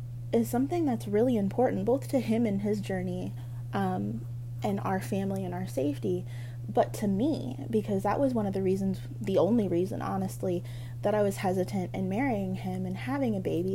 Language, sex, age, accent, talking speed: English, female, 20-39, American, 190 wpm